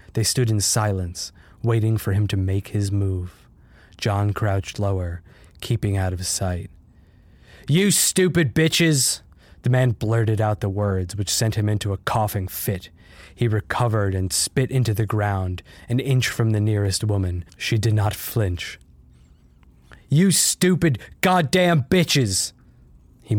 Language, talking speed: English, 145 wpm